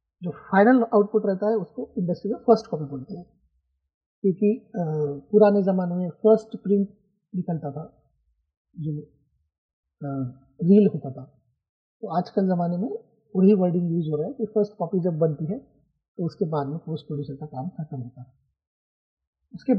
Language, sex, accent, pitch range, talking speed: Hindi, male, native, 150-205 Hz, 160 wpm